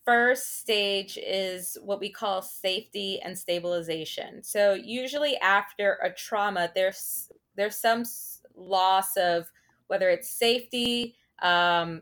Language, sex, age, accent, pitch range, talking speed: English, female, 20-39, American, 175-215 Hz, 115 wpm